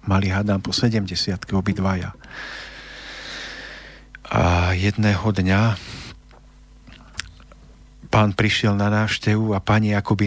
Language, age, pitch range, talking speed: Slovak, 50-69, 95-105 Hz, 90 wpm